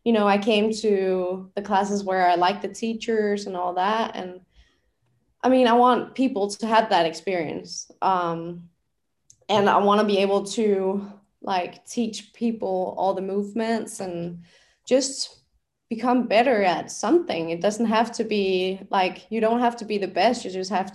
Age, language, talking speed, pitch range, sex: 20-39, English, 175 wpm, 180-225 Hz, female